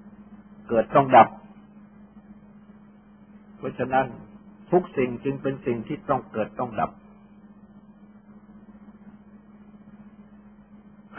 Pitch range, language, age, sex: 165-210 Hz, Thai, 60-79, male